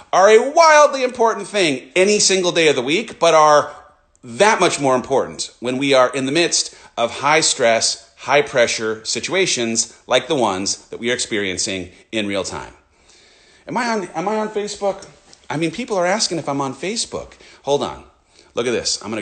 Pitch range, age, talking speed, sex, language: 115-185 Hz, 30-49, 195 wpm, male, English